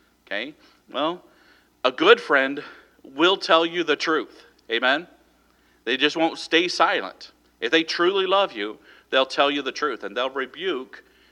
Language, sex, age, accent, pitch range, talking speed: English, male, 50-69, American, 125-165 Hz, 155 wpm